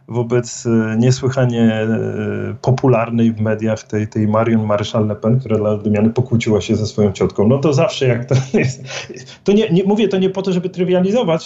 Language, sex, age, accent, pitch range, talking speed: Polish, male, 40-59, native, 115-155 Hz, 190 wpm